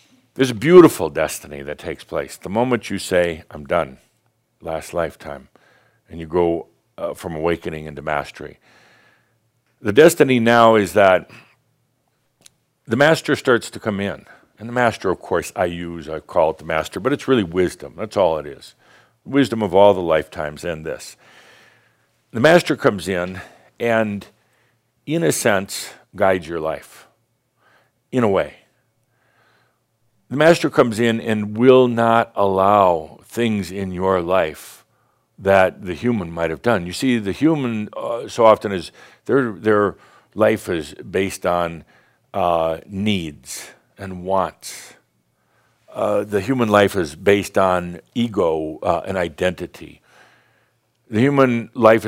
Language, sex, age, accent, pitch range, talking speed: English, male, 60-79, American, 90-115 Hz, 145 wpm